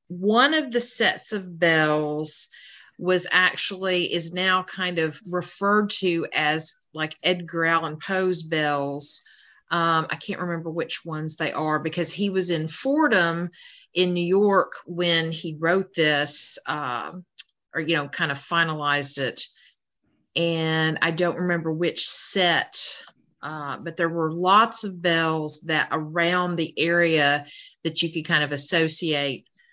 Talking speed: 145 wpm